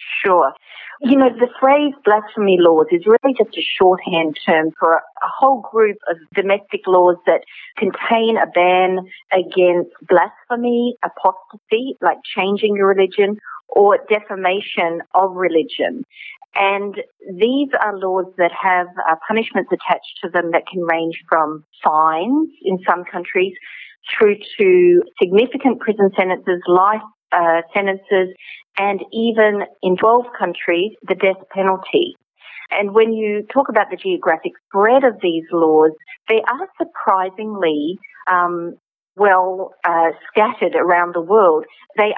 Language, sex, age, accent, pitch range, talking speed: English, female, 40-59, Australian, 175-220 Hz, 130 wpm